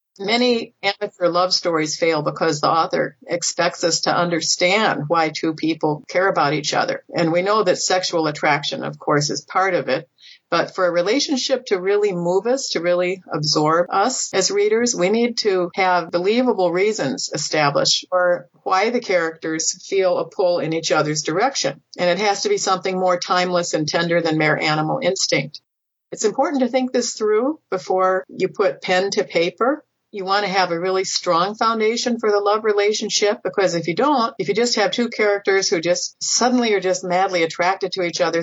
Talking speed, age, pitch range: 190 wpm, 50-69, 170-205 Hz